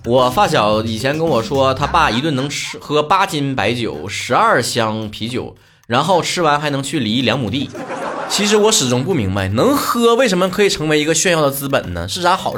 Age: 20-39